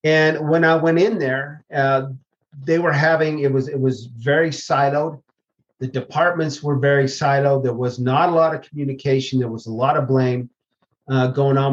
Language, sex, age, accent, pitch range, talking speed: English, male, 40-59, American, 140-170 Hz, 190 wpm